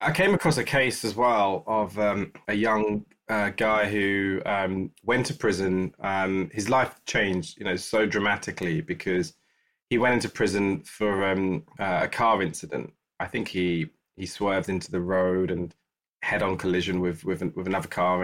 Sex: male